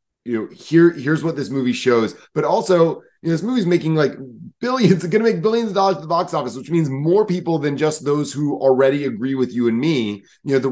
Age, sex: 30-49, male